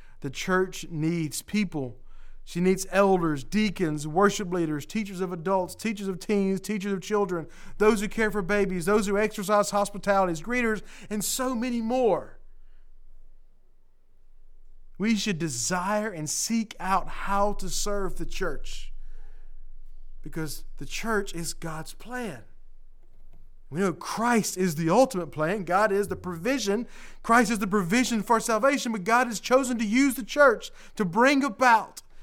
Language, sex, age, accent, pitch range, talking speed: English, male, 40-59, American, 160-220 Hz, 145 wpm